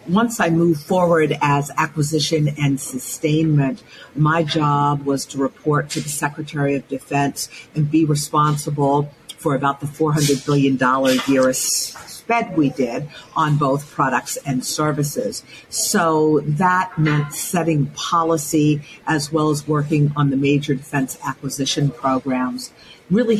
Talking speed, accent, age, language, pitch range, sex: 130 wpm, American, 50-69, English, 140-160 Hz, female